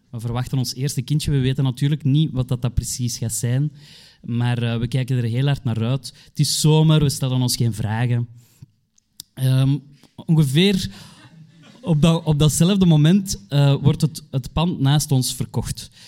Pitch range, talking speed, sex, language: 115-145 Hz, 165 wpm, male, Dutch